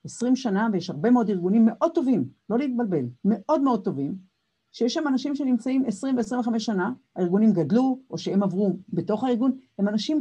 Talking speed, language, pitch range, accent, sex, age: 175 wpm, Hebrew, 145-235 Hz, native, female, 50-69